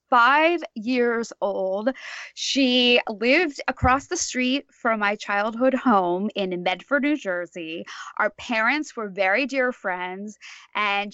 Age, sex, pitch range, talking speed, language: 20-39, female, 205-270 Hz, 125 wpm, English